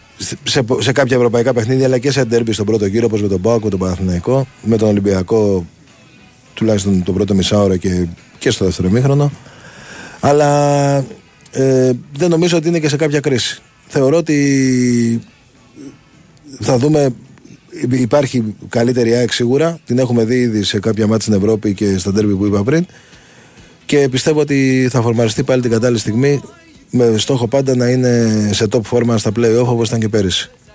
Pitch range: 105-130 Hz